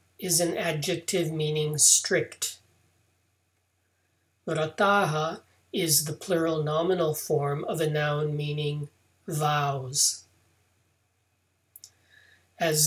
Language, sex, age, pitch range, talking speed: English, male, 40-59, 105-175 Hz, 80 wpm